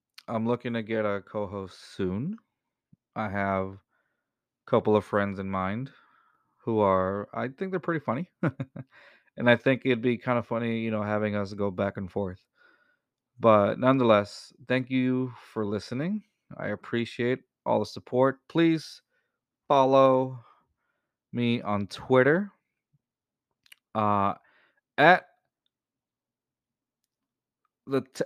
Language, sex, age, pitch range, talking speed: English, male, 30-49, 105-135 Hz, 115 wpm